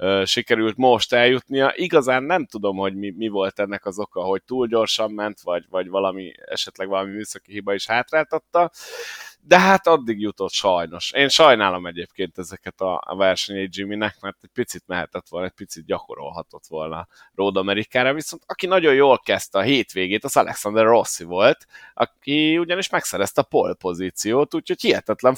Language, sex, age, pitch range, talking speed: Hungarian, male, 30-49, 95-140 Hz, 160 wpm